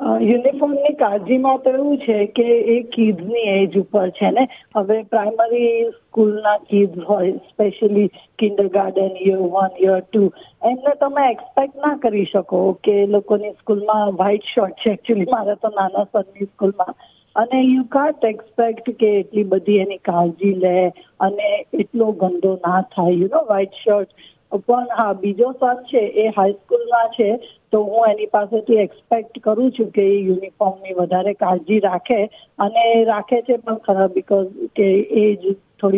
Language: Gujarati